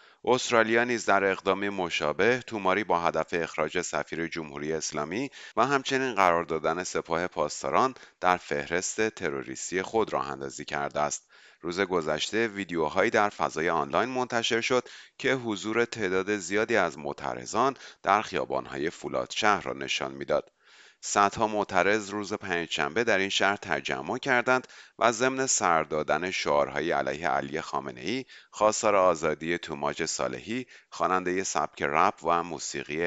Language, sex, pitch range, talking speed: Persian, male, 80-110 Hz, 130 wpm